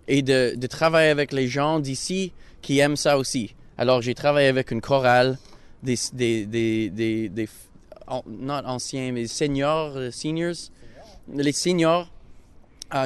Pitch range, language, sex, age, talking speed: 120-150 Hz, French, male, 20-39, 150 wpm